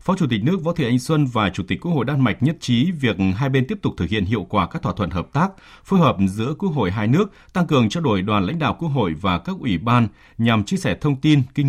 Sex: male